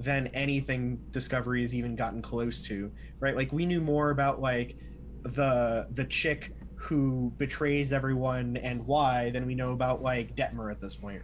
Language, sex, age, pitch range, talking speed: English, male, 20-39, 120-145 Hz, 170 wpm